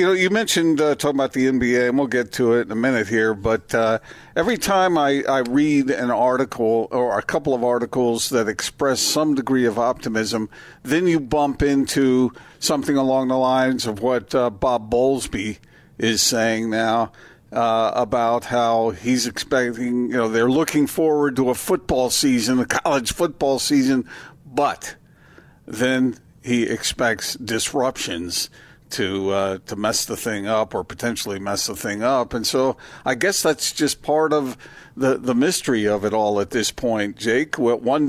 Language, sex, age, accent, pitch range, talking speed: English, male, 50-69, American, 115-140 Hz, 170 wpm